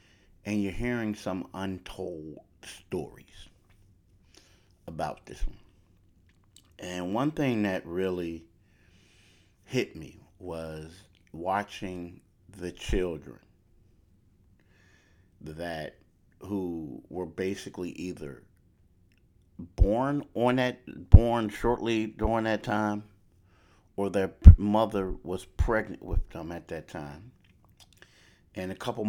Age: 50-69